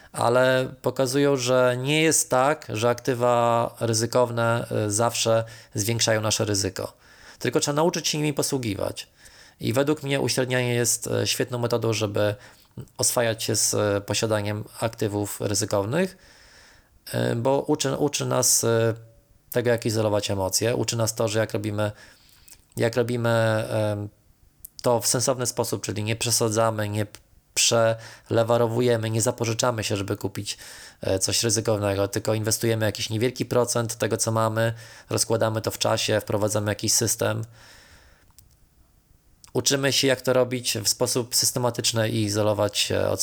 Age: 20-39